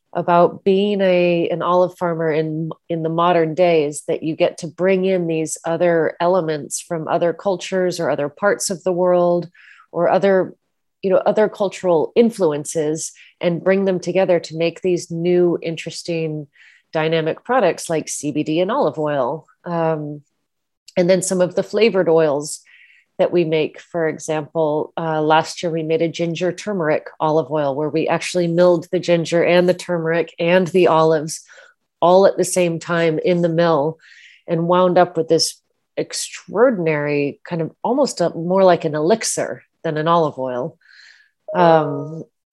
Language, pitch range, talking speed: English, 160-180 Hz, 160 wpm